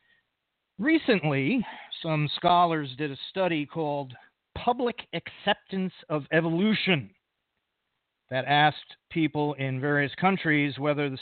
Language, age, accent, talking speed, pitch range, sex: English, 40-59, American, 100 wpm, 140-180 Hz, male